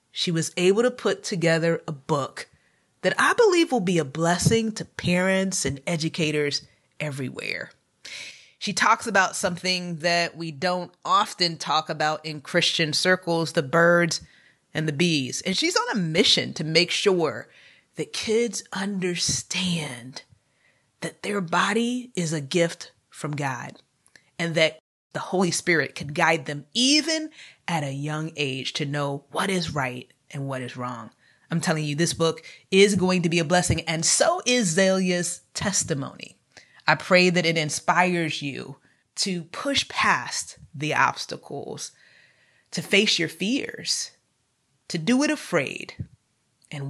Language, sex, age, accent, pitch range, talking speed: English, female, 30-49, American, 155-190 Hz, 145 wpm